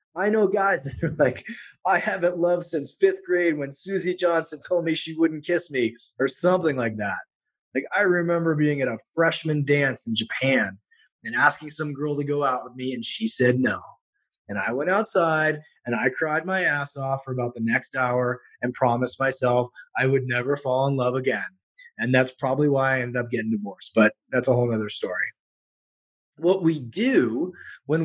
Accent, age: American, 20-39